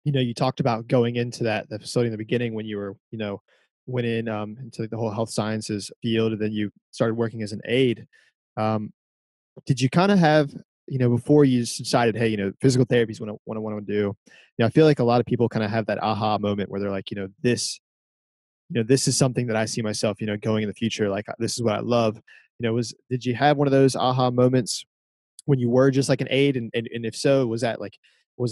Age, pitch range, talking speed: 20-39, 105-125 Hz, 265 wpm